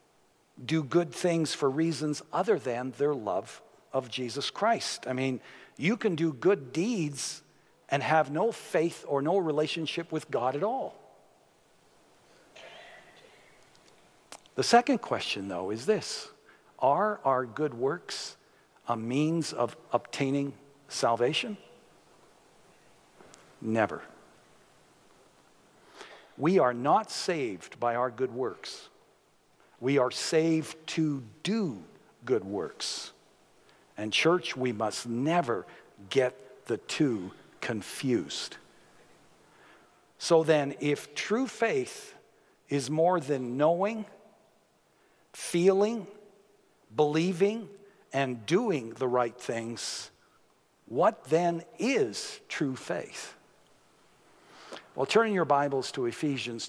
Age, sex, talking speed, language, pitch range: 60-79, male, 105 wpm, English, 130-195 Hz